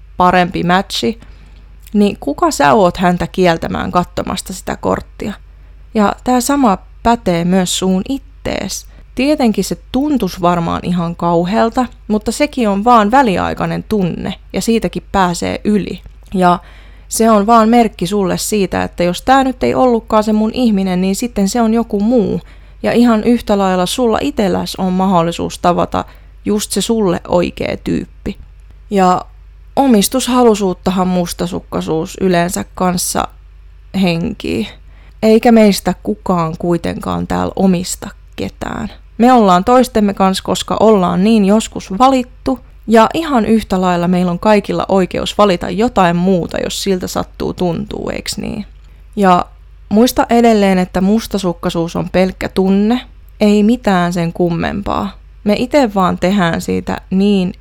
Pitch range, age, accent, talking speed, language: 175-225 Hz, 20-39, native, 130 wpm, Finnish